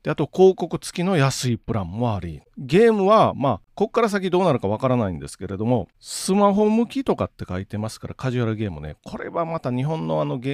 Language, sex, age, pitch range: Japanese, male, 40-59, 115-190 Hz